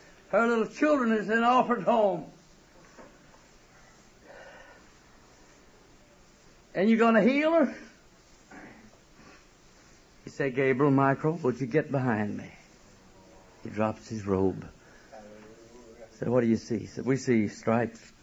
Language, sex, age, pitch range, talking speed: English, male, 60-79, 105-140 Hz, 120 wpm